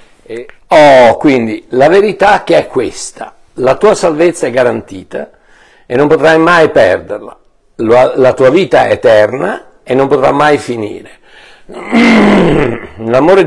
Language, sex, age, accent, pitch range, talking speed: Italian, male, 50-69, native, 130-190 Hz, 125 wpm